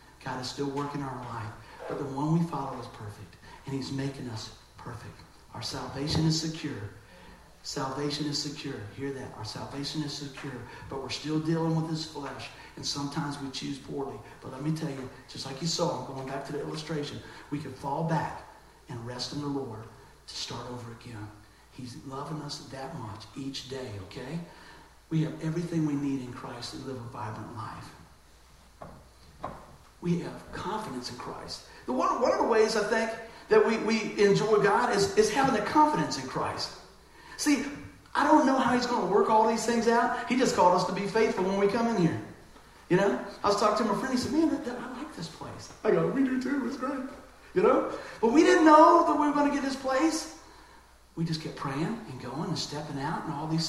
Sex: male